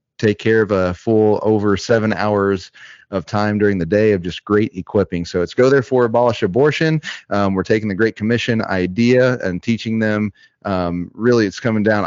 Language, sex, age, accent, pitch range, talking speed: English, male, 30-49, American, 95-110 Hz, 195 wpm